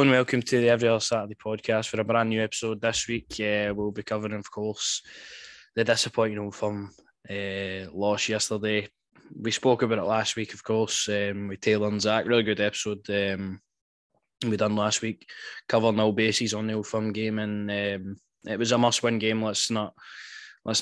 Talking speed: 195 wpm